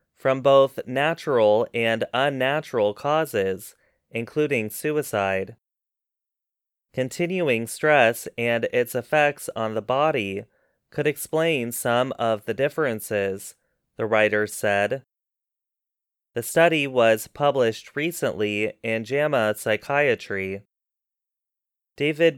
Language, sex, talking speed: English, male, 90 wpm